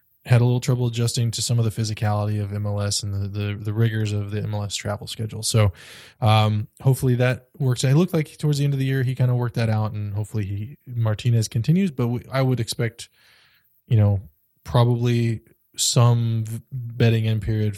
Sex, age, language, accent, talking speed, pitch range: male, 20-39, English, American, 205 wpm, 110-125 Hz